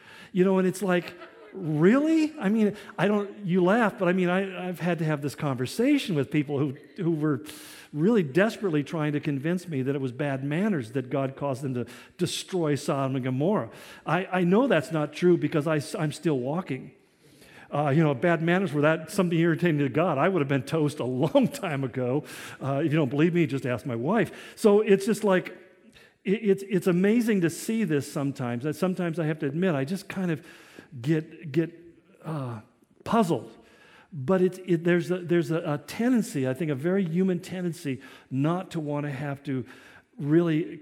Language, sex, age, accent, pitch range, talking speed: English, male, 50-69, American, 140-180 Hz, 195 wpm